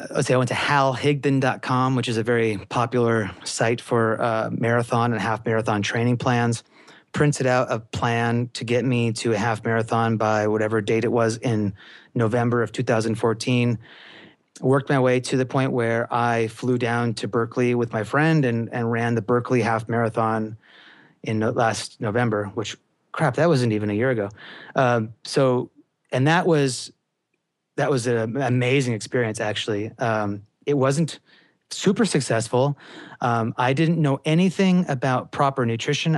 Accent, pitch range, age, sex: American, 115-135 Hz, 30-49, male